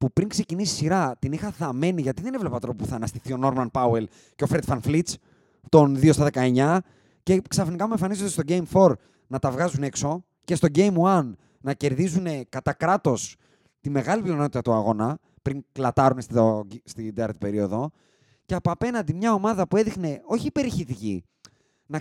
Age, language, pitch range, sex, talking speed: 30-49, Greek, 130-190 Hz, male, 180 wpm